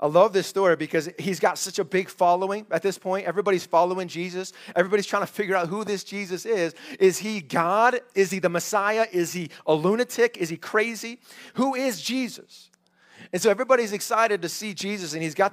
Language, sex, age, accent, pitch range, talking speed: English, male, 30-49, American, 155-200 Hz, 205 wpm